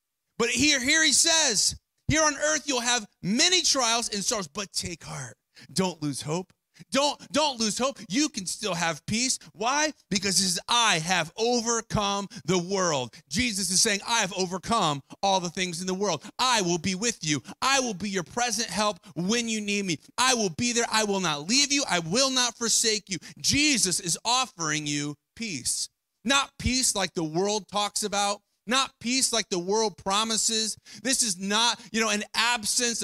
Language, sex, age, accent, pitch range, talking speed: English, male, 30-49, American, 180-240 Hz, 190 wpm